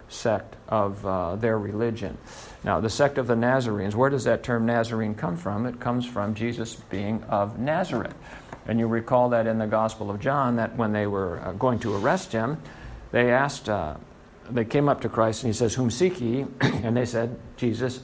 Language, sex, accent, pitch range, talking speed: English, male, American, 110-130 Hz, 195 wpm